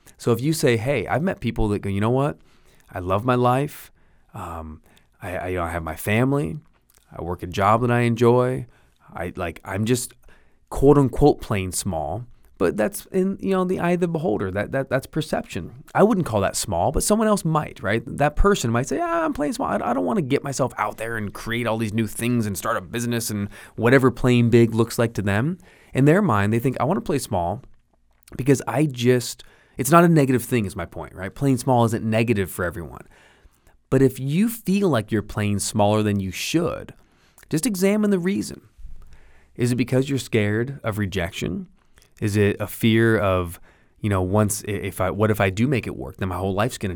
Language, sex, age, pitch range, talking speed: English, male, 20-39, 95-135 Hz, 220 wpm